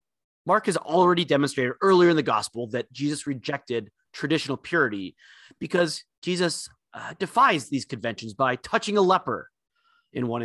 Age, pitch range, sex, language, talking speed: 30-49, 115-165 Hz, male, English, 145 wpm